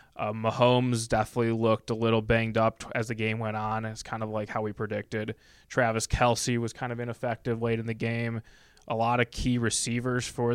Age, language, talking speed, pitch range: 20-39, English, 210 wpm, 110-125 Hz